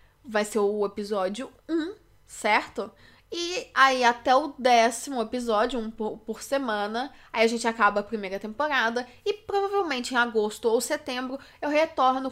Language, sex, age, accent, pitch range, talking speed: English, female, 10-29, Brazilian, 210-280 Hz, 150 wpm